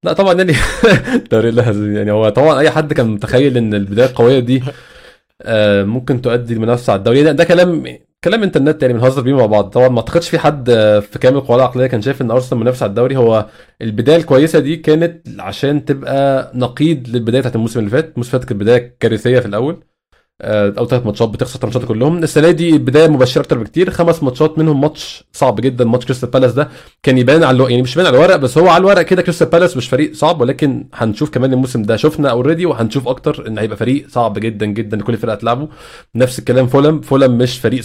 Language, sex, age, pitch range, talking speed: Arabic, male, 20-39, 120-150 Hz, 210 wpm